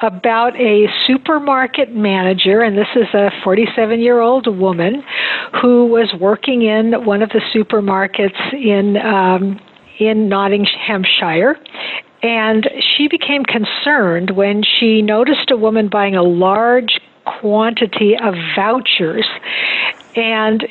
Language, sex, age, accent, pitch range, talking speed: English, female, 50-69, American, 195-240 Hz, 110 wpm